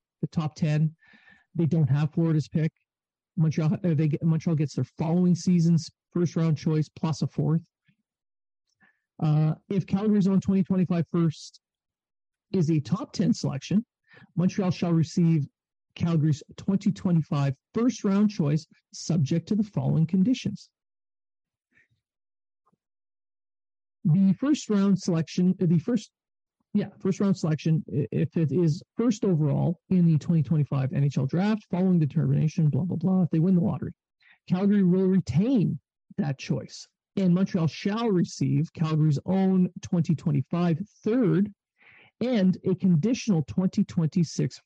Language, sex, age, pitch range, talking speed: English, male, 40-59, 155-195 Hz, 125 wpm